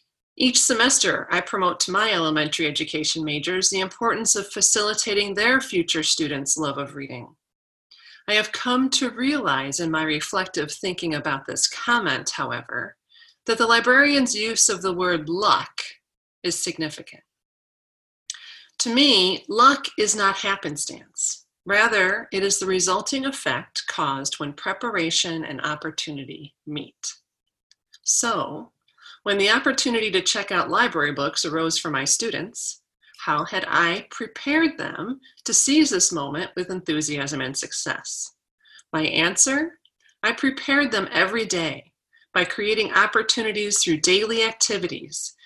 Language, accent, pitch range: English, American, 155-230 Hz